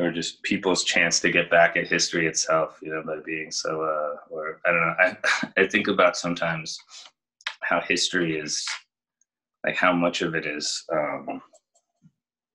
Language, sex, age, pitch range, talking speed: English, male, 20-39, 80-85 Hz, 165 wpm